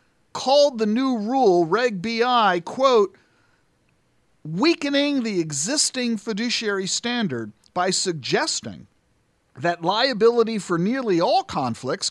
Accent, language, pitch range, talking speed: American, English, 170-235 Hz, 100 wpm